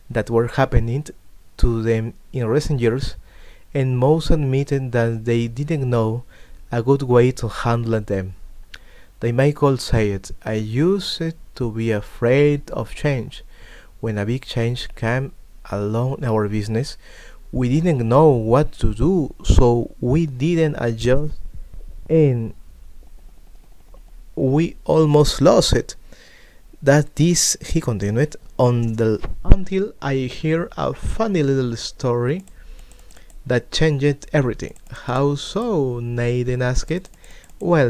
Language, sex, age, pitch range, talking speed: English, male, 30-49, 115-145 Hz, 120 wpm